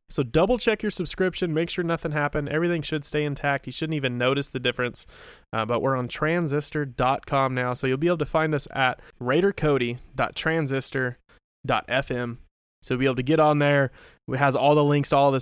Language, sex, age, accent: English, male, 20-39, American